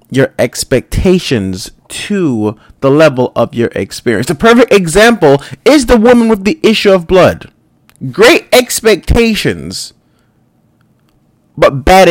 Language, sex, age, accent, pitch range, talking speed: English, male, 30-49, American, 160-230 Hz, 115 wpm